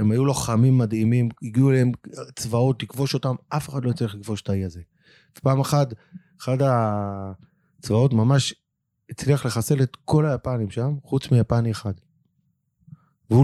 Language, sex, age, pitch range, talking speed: Hebrew, male, 30-49, 110-150 Hz, 145 wpm